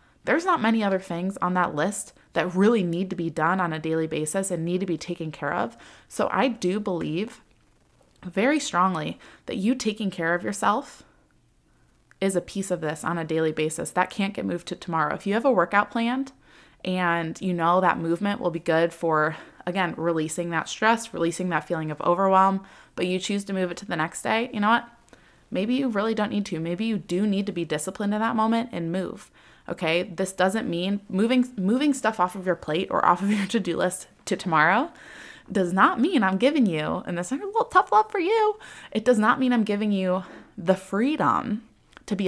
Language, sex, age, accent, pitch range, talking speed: English, female, 20-39, American, 170-220 Hz, 215 wpm